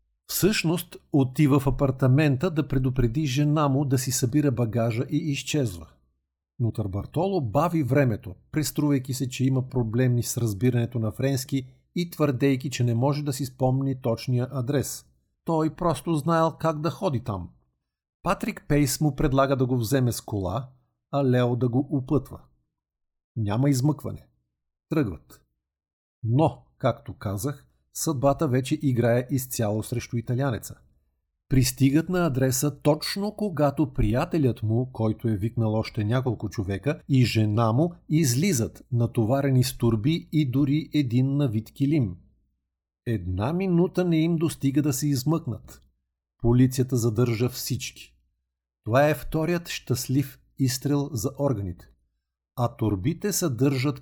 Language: Bulgarian